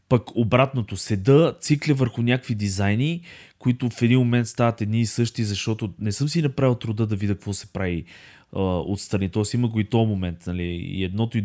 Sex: male